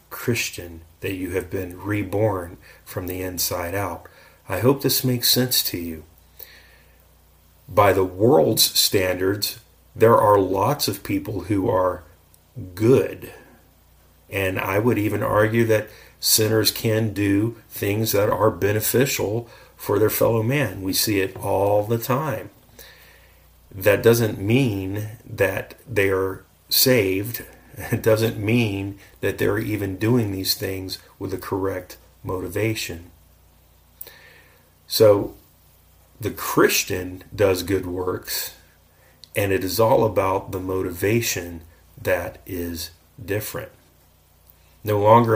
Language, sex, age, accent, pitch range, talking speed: English, male, 40-59, American, 90-110 Hz, 120 wpm